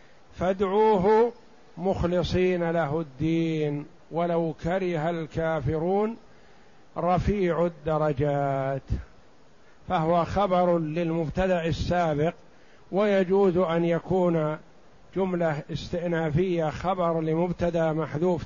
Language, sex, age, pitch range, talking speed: Arabic, male, 50-69, 160-195 Hz, 70 wpm